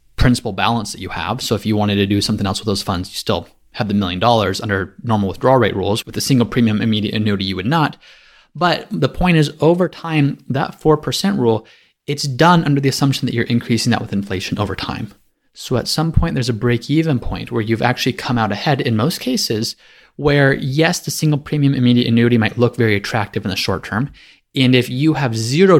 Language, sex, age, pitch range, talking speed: English, male, 20-39, 110-140 Hz, 220 wpm